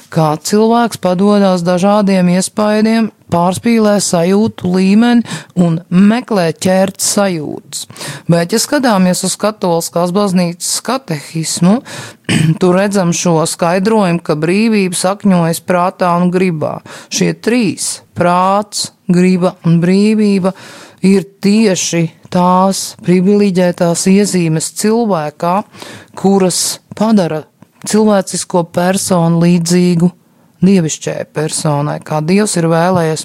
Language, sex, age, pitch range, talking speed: English, female, 30-49, 170-195 Hz, 95 wpm